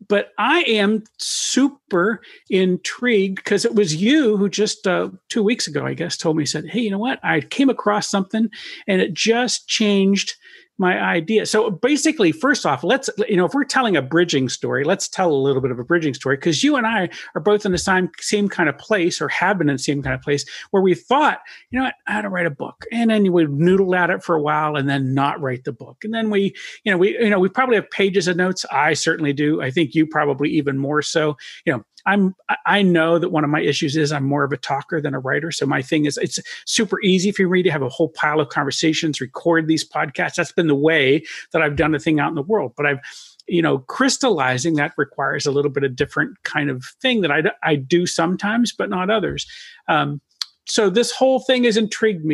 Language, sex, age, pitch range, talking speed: English, male, 50-69, 150-215 Hz, 240 wpm